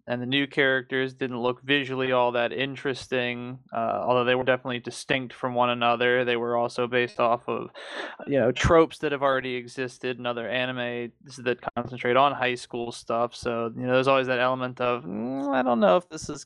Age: 20-39